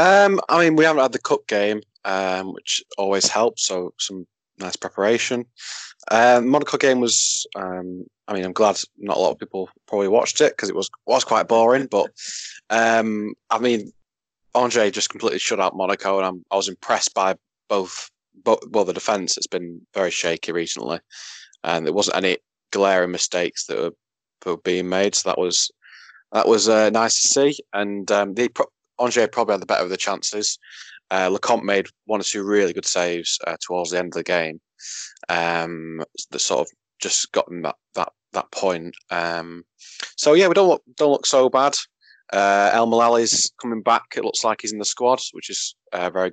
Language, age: English, 20-39